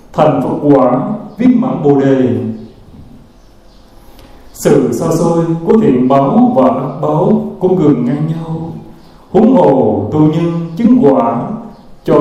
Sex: male